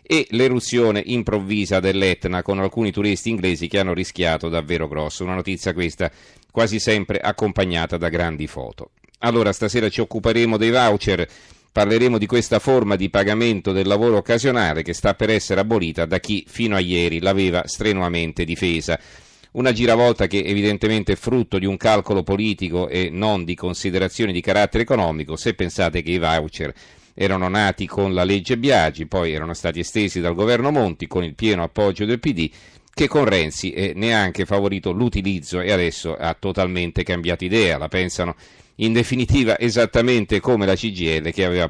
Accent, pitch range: native, 90-110 Hz